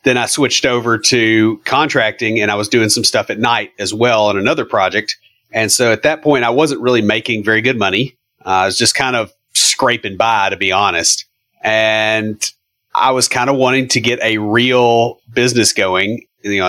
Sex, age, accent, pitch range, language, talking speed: male, 30-49, American, 105-125 Hz, English, 200 wpm